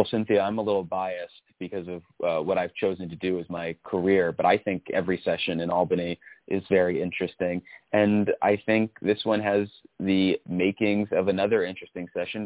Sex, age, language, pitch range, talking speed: male, 30-49, English, 90-110 Hz, 190 wpm